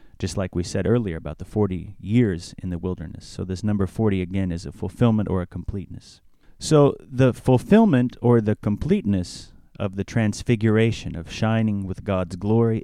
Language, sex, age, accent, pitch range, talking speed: English, male, 30-49, American, 90-115 Hz, 175 wpm